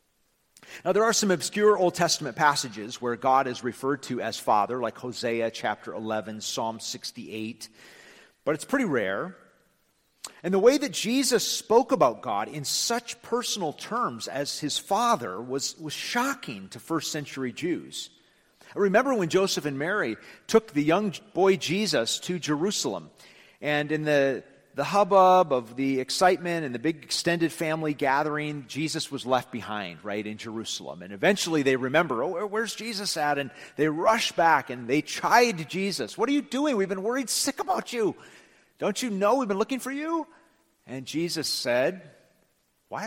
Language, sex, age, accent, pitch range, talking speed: English, male, 40-59, American, 135-210 Hz, 165 wpm